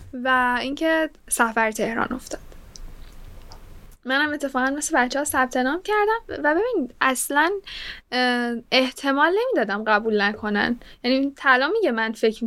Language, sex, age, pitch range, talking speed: Persian, female, 10-29, 220-295 Hz, 115 wpm